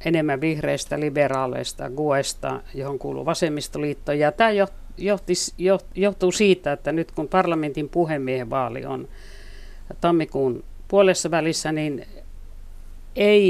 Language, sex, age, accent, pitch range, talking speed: Finnish, female, 60-79, native, 135-180 Hz, 100 wpm